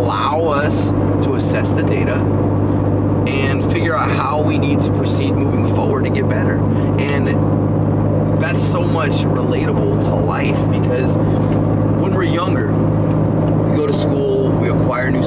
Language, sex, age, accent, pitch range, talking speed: English, male, 20-39, American, 100-145 Hz, 140 wpm